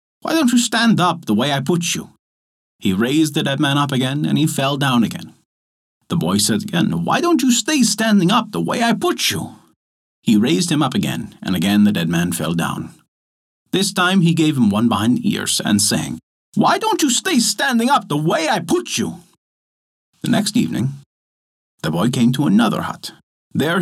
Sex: male